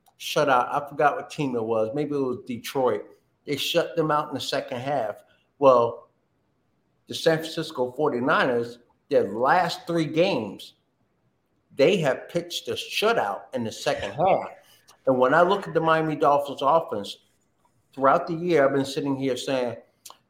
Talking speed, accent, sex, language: 165 wpm, American, male, English